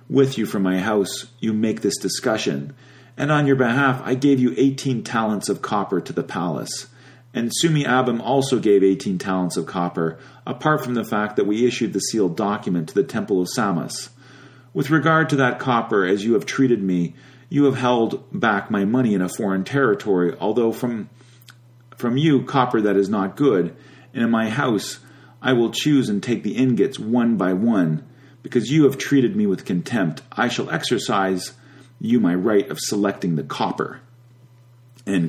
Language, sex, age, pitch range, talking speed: English, male, 40-59, 100-135 Hz, 185 wpm